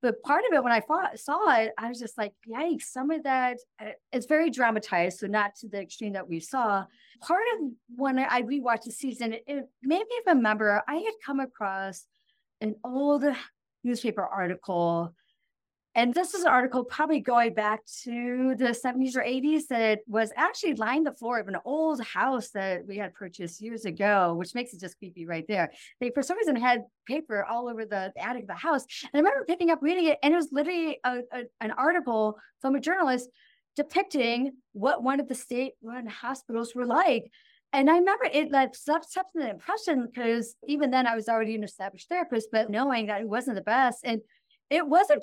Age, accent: 40-59, American